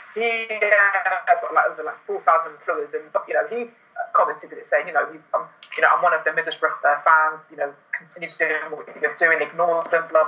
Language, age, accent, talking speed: English, 20-39, British, 220 wpm